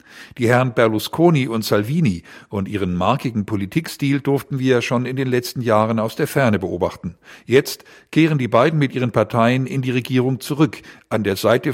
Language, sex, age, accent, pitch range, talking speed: German, male, 50-69, German, 110-135 Hz, 175 wpm